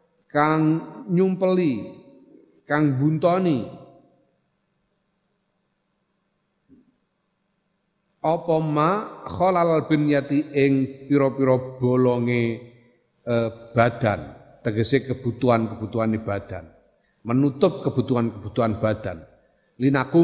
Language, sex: Indonesian, male